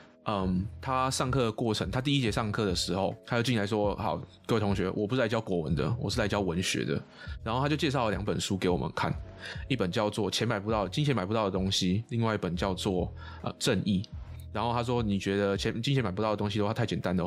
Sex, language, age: male, Chinese, 20-39